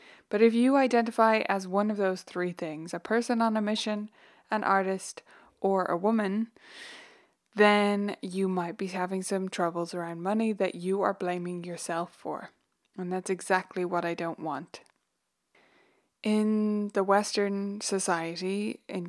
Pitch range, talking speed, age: 185-225 Hz, 150 wpm, 20-39